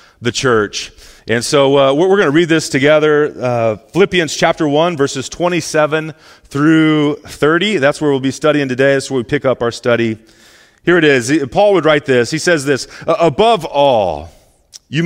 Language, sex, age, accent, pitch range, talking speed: English, male, 40-59, American, 110-155 Hz, 180 wpm